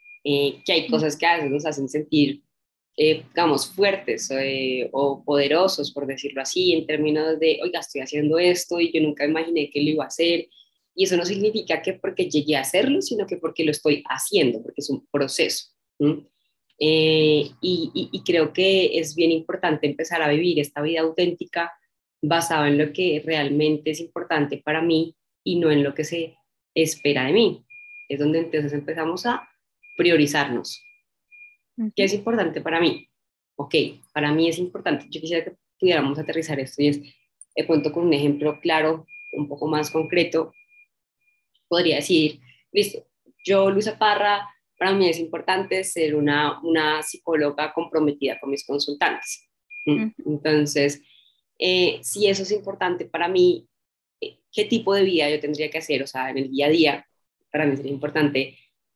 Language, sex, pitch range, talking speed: Spanish, female, 150-180 Hz, 170 wpm